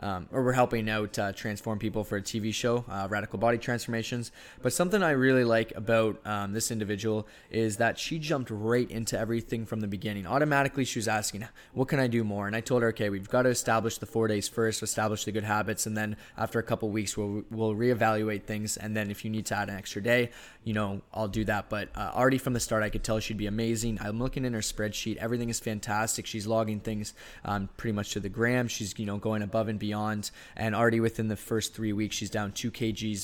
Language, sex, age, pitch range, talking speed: English, male, 20-39, 105-115 Hz, 245 wpm